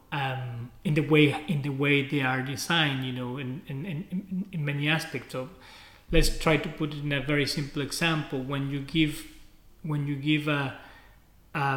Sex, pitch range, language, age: male, 130-160 Hz, Chinese, 30-49